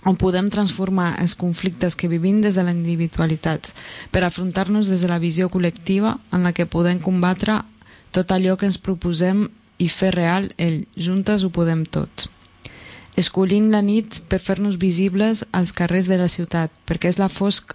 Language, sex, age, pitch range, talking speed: Spanish, female, 20-39, 170-195 Hz, 170 wpm